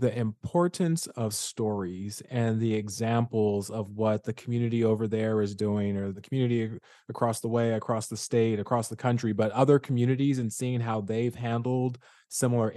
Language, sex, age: English, male, 20-39